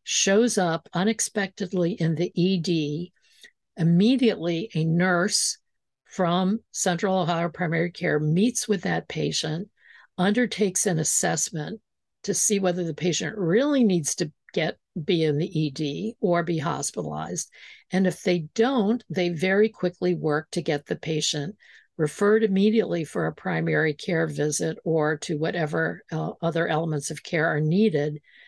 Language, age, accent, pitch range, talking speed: English, 60-79, American, 160-205 Hz, 140 wpm